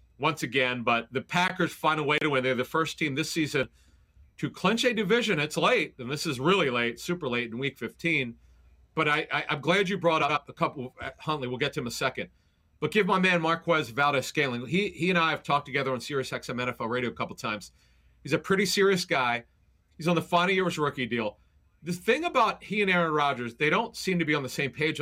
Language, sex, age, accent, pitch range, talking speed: English, male, 40-59, American, 125-175 Hz, 235 wpm